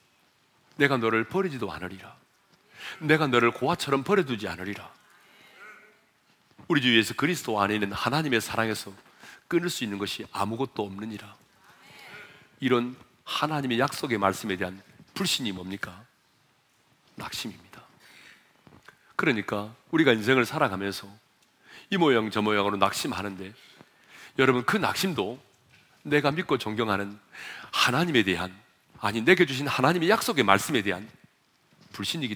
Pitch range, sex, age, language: 100-135 Hz, male, 40-59, Korean